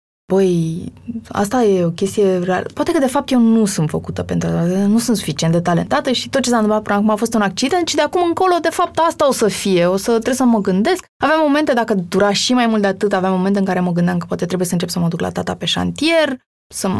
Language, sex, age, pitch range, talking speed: Romanian, female, 20-39, 180-255 Hz, 265 wpm